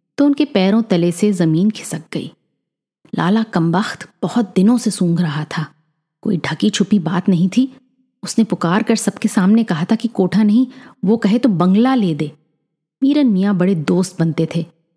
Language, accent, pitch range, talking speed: Hindi, native, 165-230 Hz, 170 wpm